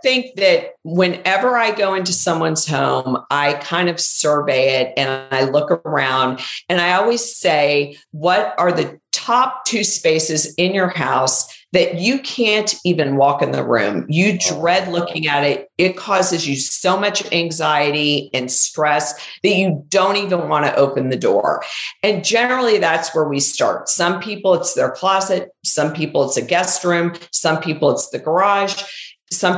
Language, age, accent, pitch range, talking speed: English, 50-69, American, 145-190 Hz, 170 wpm